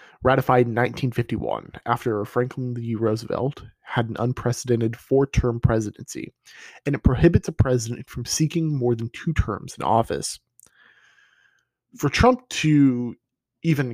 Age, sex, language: 20-39, male, English